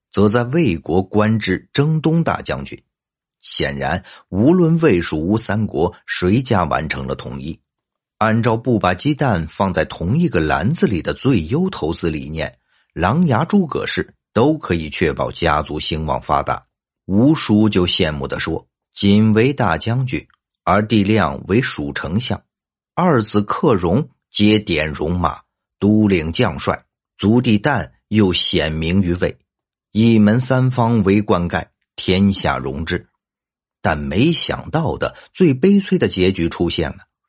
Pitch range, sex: 90-140 Hz, male